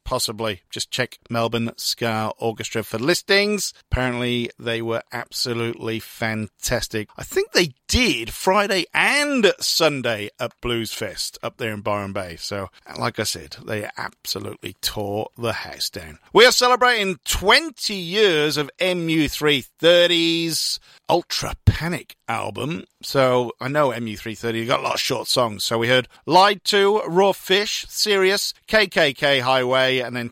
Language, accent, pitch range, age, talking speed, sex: English, British, 115-170 Hz, 40-59, 145 wpm, male